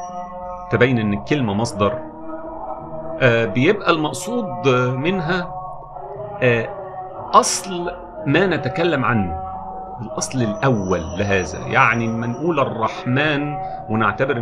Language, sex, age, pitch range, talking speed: Arabic, male, 50-69, 105-150 Hz, 85 wpm